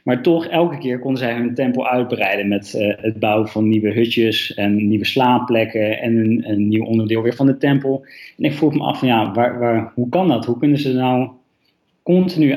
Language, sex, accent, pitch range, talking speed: Dutch, male, Dutch, 115-140 Hz, 220 wpm